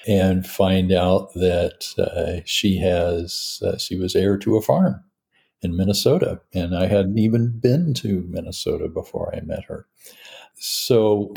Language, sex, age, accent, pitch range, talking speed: English, male, 60-79, American, 90-110 Hz, 150 wpm